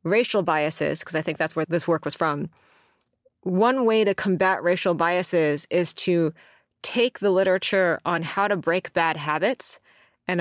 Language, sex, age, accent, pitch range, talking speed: English, female, 30-49, American, 165-205 Hz, 165 wpm